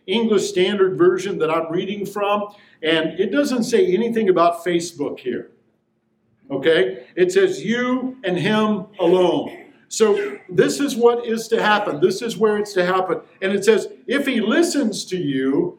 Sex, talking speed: male, 165 wpm